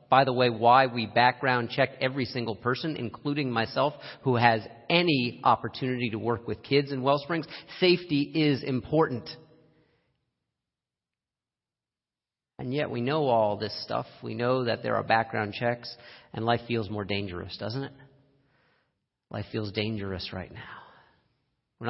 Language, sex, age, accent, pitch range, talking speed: English, male, 40-59, American, 110-135 Hz, 140 wpm